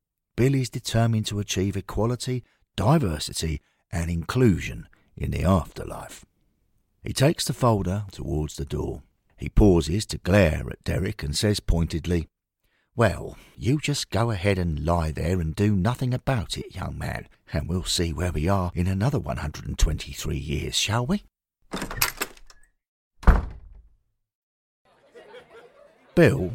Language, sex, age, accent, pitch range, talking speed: English, male, 50-69, British, 80-115 Hz, 125 wpm